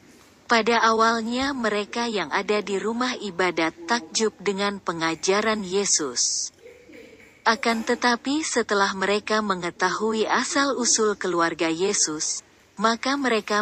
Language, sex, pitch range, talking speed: Indonesian, female, 185-225 Hz, 95 wpm